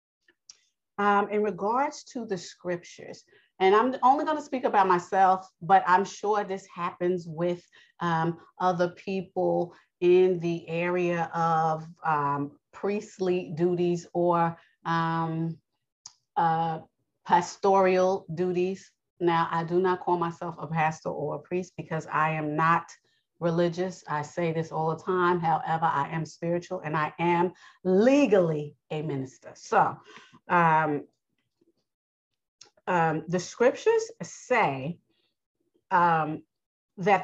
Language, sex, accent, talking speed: English, female, American, 120 wpm